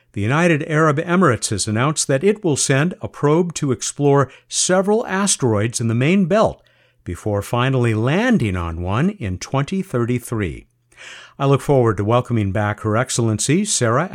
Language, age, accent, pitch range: English, 60-79, American, 110-160 Hz